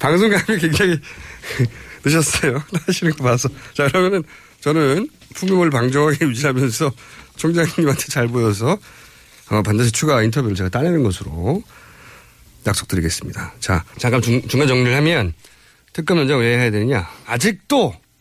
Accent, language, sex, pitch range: native, Korean, male, 115-160 Hz